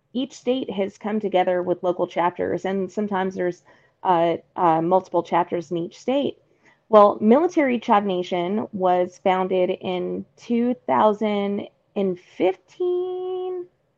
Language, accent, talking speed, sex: English, American, 110 wpm, female